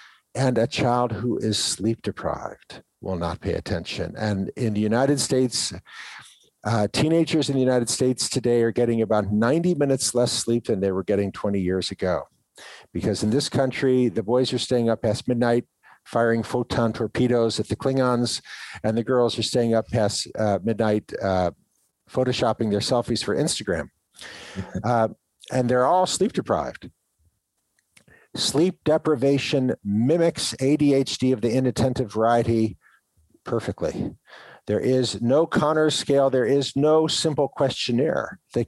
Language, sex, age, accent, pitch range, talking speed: English, male, 50-69, American, 115-140 Hz, 145 wpm